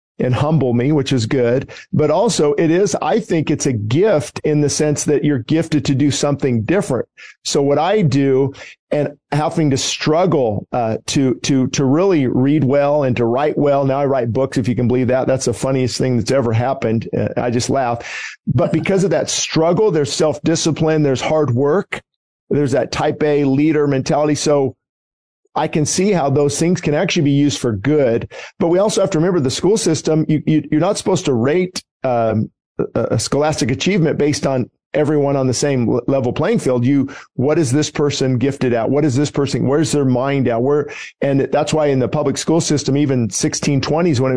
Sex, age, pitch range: male, 50-69, 130-150 Hz